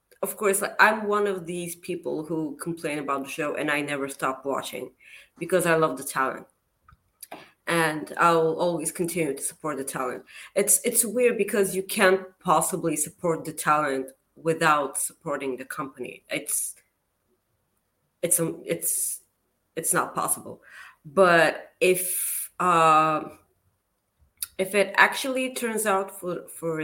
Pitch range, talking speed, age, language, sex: 150-195 Hz, 135 wpm, 30-49, English, female